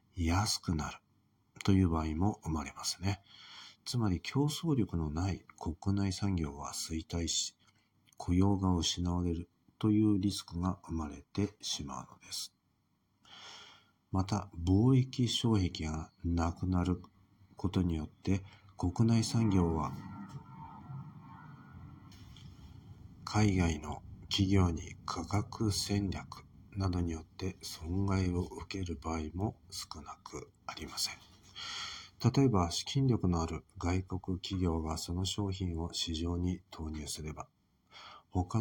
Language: Japanese